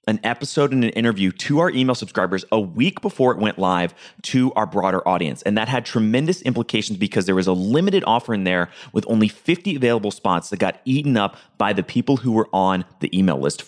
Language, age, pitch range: English, 30-49, 100-135 Hz